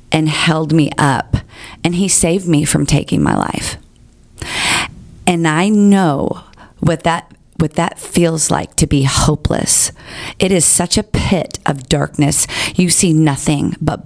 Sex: female